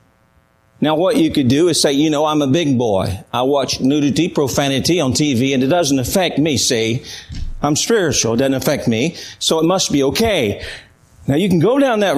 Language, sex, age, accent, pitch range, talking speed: English, male, 40-59, American, 120-155 Hz, 205 wpm